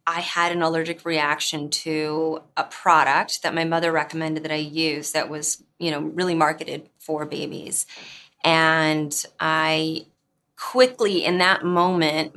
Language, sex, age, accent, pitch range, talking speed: English, female, 20-39, American, 155-165 Hz, 140 wpm